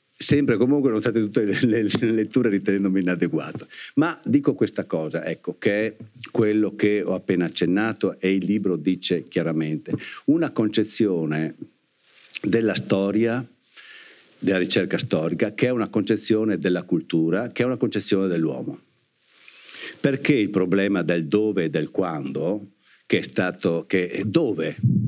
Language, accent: Italian, native